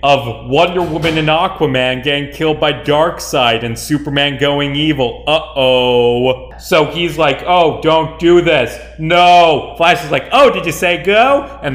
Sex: male